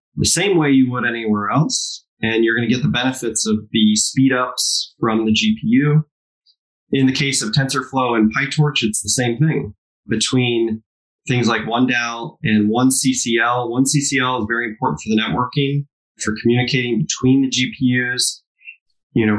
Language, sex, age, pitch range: English, male, 20-39, 110-135 Hz